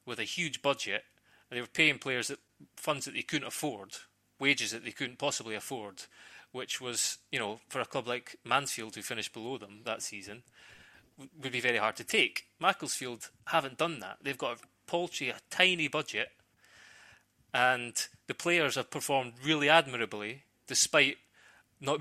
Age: 30-49